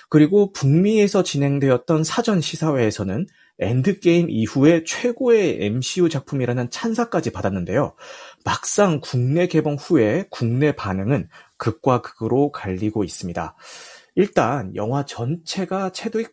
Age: 30-49